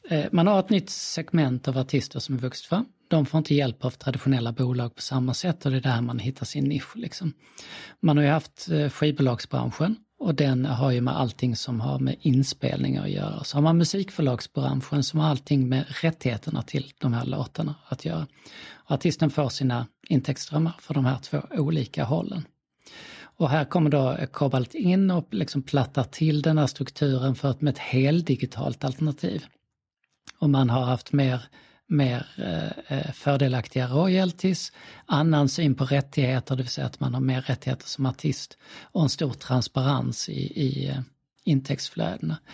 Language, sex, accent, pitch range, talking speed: Swedish, male, native, 130-155 Hz, 170 wpm